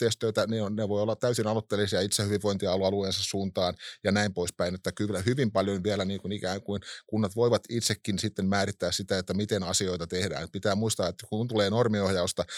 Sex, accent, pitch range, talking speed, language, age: male, native, 95-115 Hz, 175 wpm, Finnish, 30-49